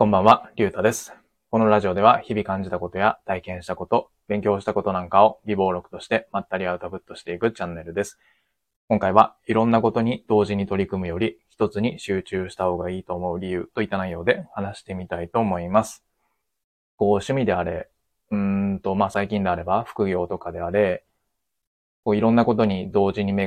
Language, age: Japanese, 20-39